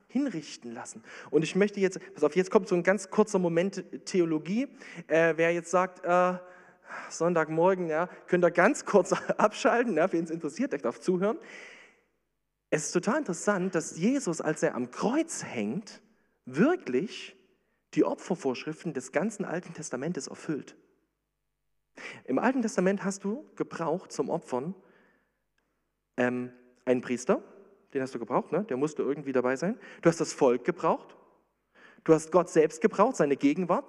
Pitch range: 155-210 Hz